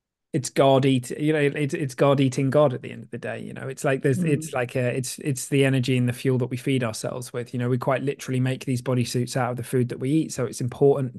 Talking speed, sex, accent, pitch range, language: 295 wpm, male, British, 125-150 Hz, English